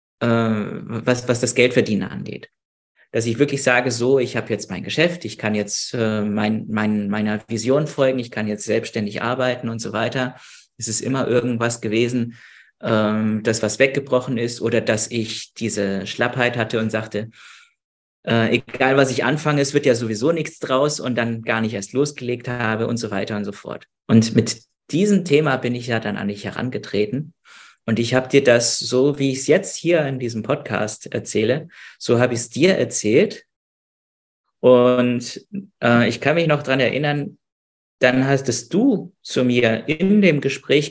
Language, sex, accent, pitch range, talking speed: German, male, German, 110-130 Hz, 180 wpm